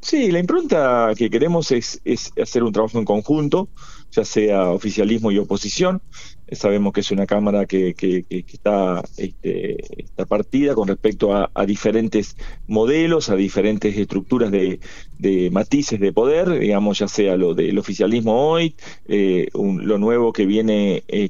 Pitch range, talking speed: 105-140 Hz, 165 wpm